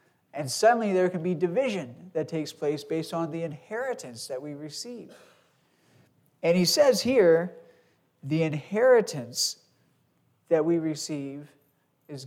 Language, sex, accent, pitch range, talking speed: English, male, American, 150-180 Hz, 125 wpm